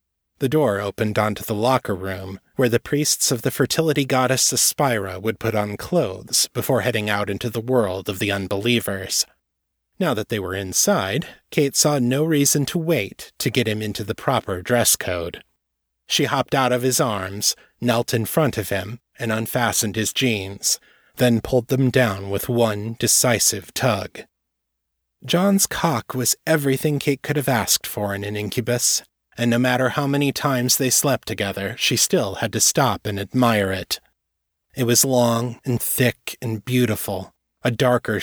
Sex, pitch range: male, 100-130 Hz